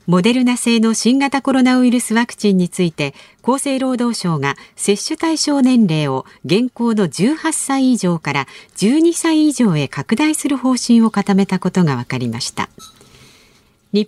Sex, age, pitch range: female, 50-69, 175-255 Hz